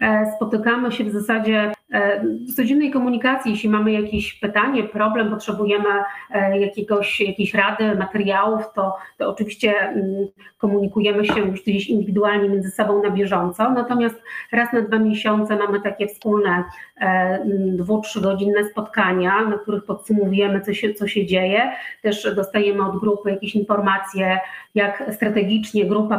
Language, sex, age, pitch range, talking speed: Polish, female, 40-59, 200-215 Hz, 135 wpm